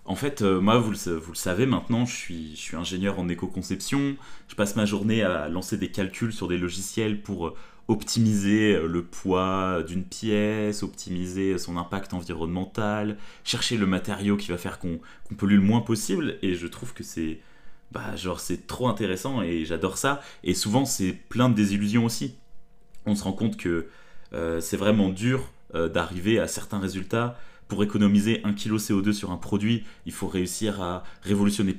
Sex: male